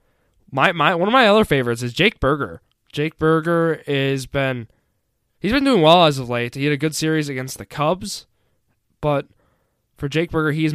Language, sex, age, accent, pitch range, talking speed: English, male, 20-39, American, 120-150 Hz, 190 wpm